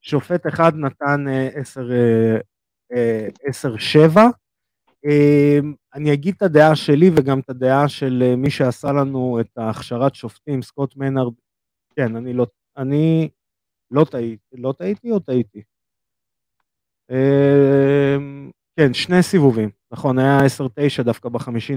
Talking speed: 115 wpm